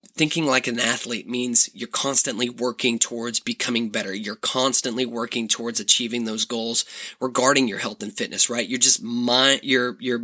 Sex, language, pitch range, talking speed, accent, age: male, English, 120-135 Hz, 170 wpm, American, 20-39